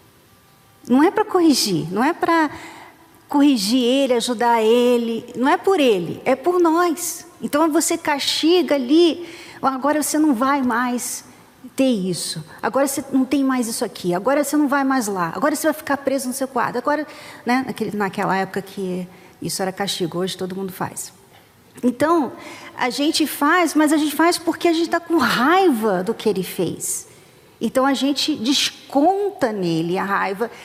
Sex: female